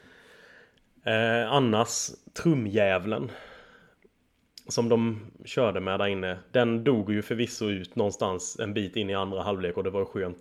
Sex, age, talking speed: male, 30-49, 150 wpm